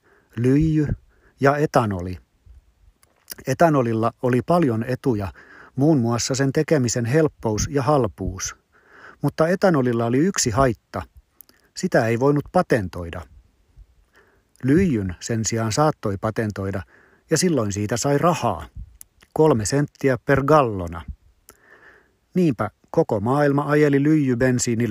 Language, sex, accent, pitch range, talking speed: Finnish, male, native, 105-135 Hz, 100 wpm